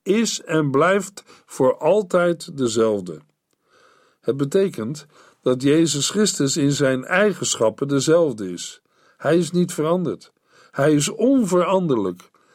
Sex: male